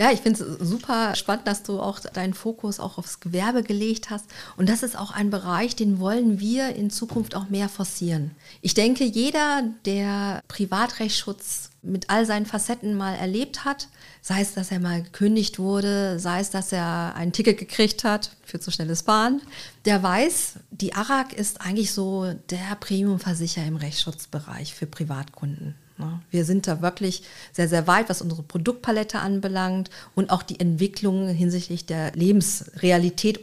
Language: German